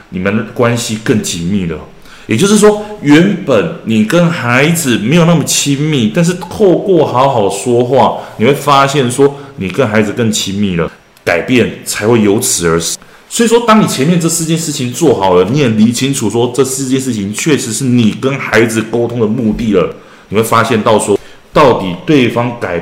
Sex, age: male, 20-39